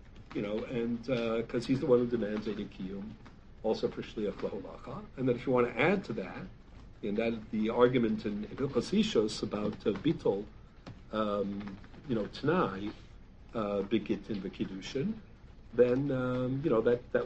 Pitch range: 110-135 Hz